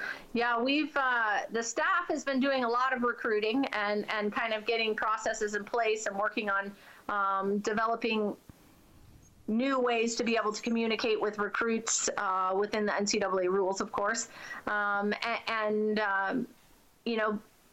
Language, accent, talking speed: English, American, 160 wpm